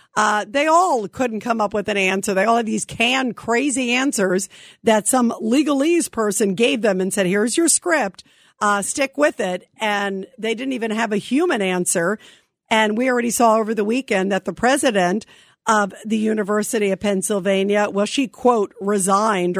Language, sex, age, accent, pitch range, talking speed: English, female, 50-69, American, 195-250 Hz, 180 wpm